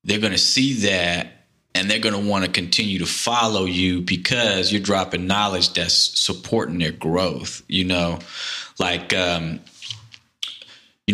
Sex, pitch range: male, 90-105 Hz